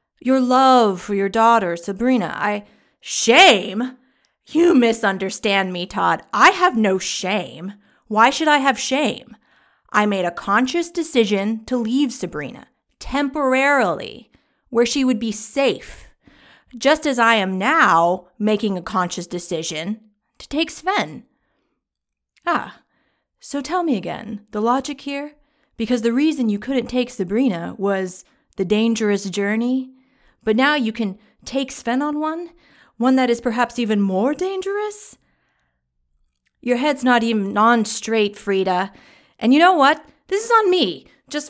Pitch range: 205-290 Hz